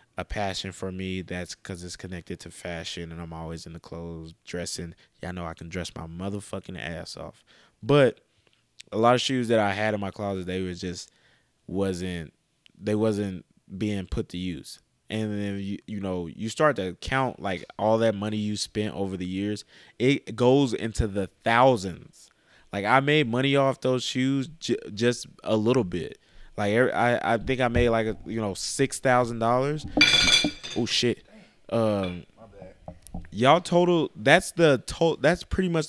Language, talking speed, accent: English, 170 wpm, American